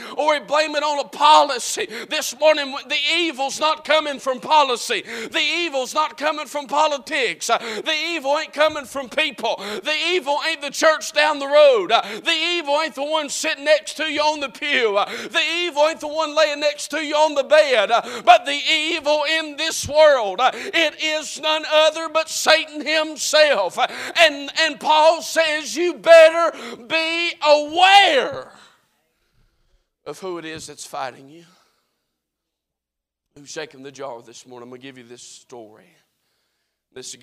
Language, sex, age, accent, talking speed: English, male, 50-69, American, 165 wpm